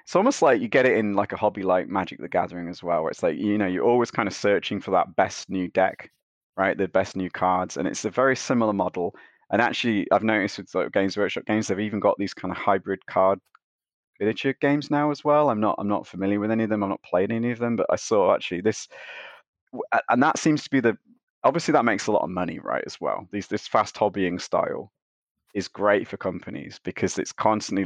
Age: 20-39